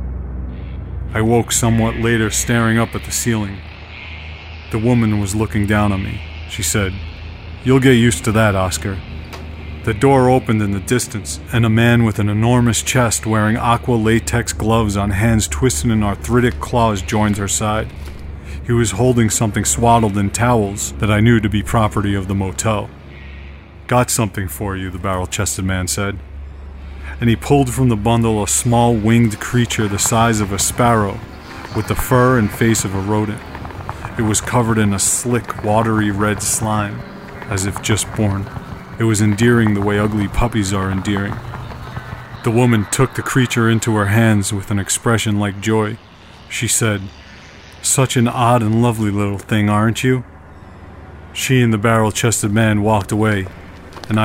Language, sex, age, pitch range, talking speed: English, male, 40-59, 95-115 Hz, 165 wpm